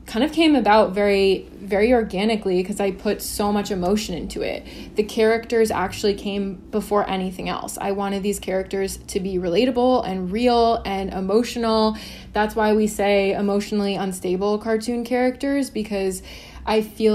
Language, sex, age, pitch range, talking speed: English, female, 20-39, 195-220 Hz, 155 wpm